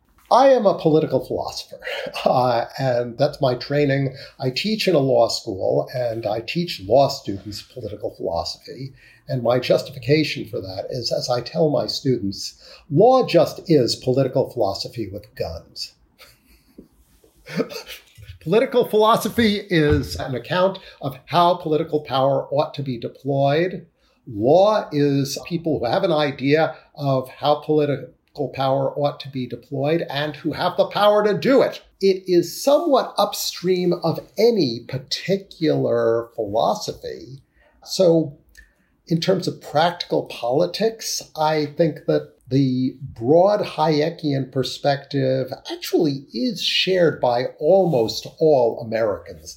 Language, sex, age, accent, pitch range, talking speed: English, male, 50-69, American, 130-180 Hz, 125 wpm